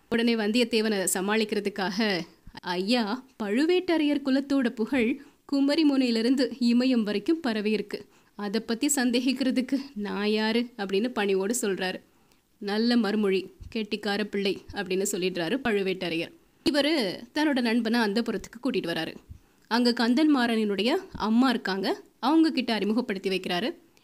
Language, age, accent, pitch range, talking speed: Tamil, 20-39, native, 205-270 Hz, 105 wpm